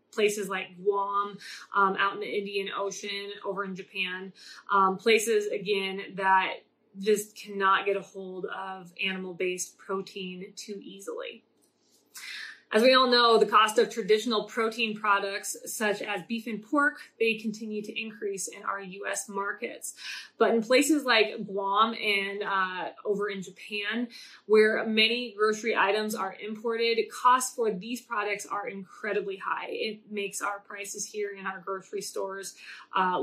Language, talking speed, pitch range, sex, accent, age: English, 145 wpm, 200-235 Hz, female, American, 20-39